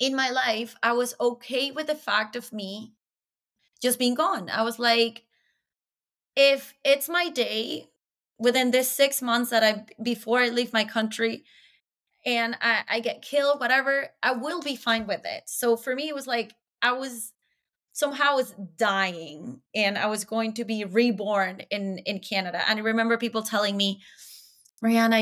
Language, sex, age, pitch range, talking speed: English, female, 20-39, 200-240 Hz, 175 wpm